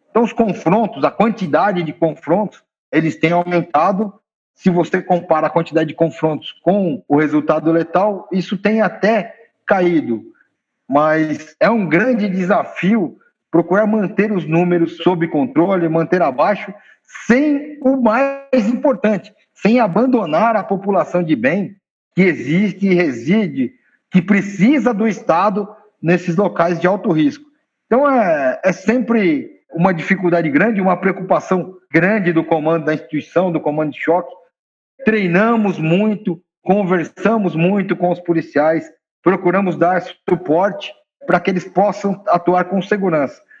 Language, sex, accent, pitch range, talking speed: Portuguese, male, Brazilian, 170-220 Hz, 130 wpm